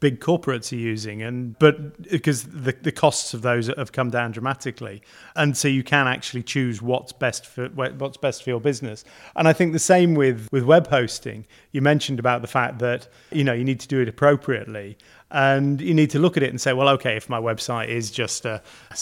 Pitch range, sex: 120-135 Hz, male